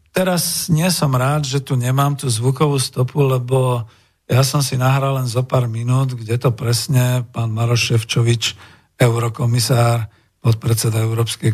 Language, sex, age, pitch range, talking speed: Slovak, male, 50-69, 115-140 Hz, 145 wpm